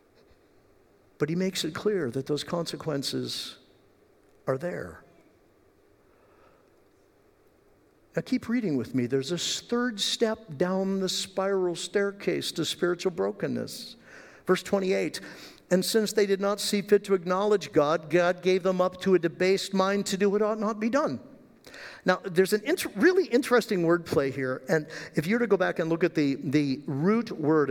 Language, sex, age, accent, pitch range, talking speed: English, male, 50-69, American, 160-215 Hz, 160 wpm